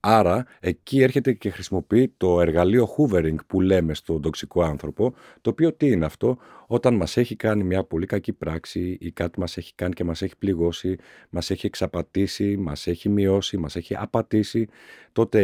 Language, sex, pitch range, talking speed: Greek, male, 85-105 Hz, 175 wpm